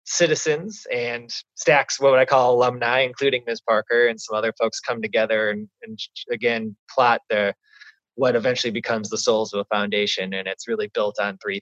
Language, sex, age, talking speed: English, male, 20-39, 175 wpm